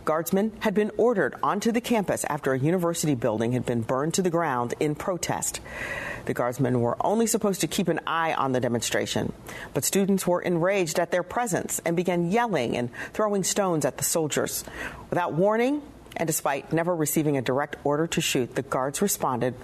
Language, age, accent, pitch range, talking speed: English, 40-59, American, 135-180 Hz, 185 wpm